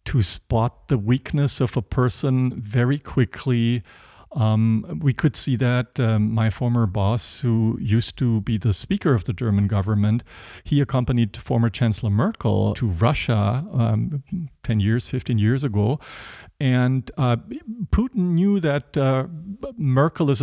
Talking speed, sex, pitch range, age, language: 145 wpm, male, 110-145 Hz, 50-69, English